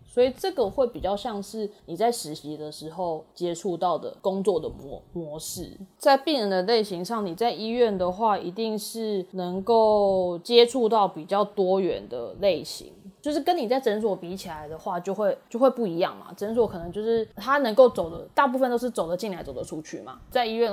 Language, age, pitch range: Chinese, 20-39, 175-230 Hz